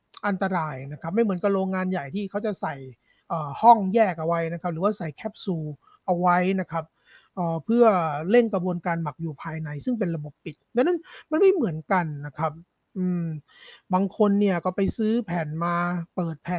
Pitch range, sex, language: 170-220 Hz, male, Thai